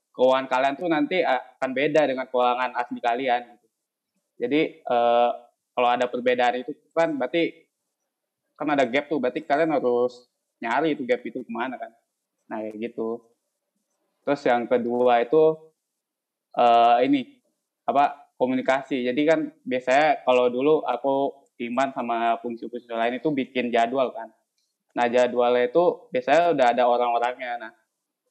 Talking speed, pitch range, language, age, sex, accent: 135 wpm, 120-145 Hz, Indonesian, 20-39, male, native